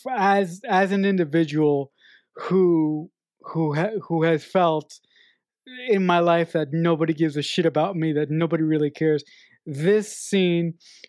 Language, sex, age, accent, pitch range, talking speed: English, male, 20-39, American, 170-240 Hz, 140 wpm